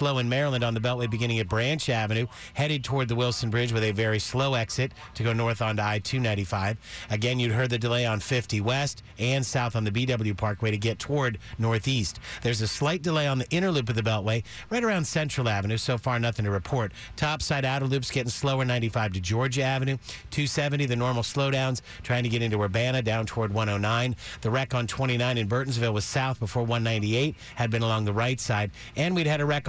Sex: male